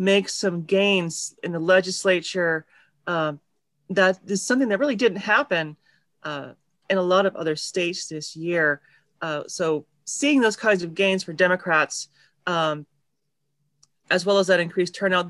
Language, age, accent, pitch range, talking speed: English, 40-59, American, 160-195 Hz, 155 wpm